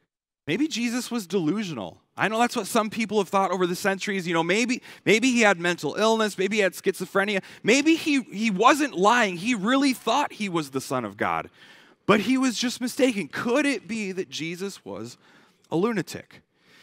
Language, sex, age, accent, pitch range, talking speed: English, male, 30-49, American, 135-205 Hz, 195 wpm